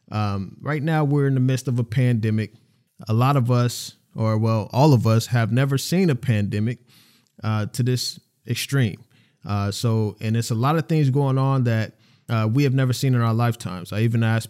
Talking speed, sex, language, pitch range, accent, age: 205 wpm, male, English, 110-140 Hz, American, 20-39